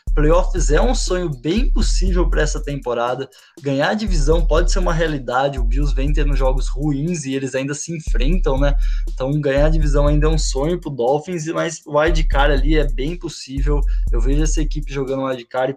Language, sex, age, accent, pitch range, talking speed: Portuguese, male, 20-39, Brazilian, 130-160 Hz, 210 wpm